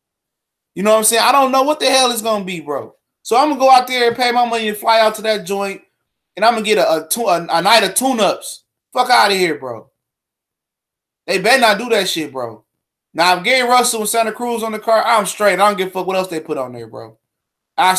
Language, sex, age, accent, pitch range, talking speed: English, male, 20-39, American, 165-230 Hz, 275 wpm